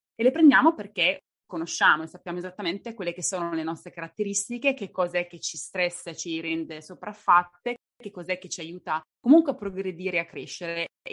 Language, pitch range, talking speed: Italian, 170-205 Hz, 185 wpm